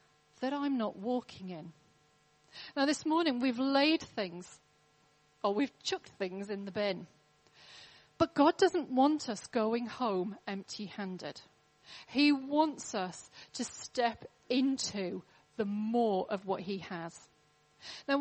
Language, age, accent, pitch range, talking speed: English, 40-59, British, 175-260 Hz, 130 wpm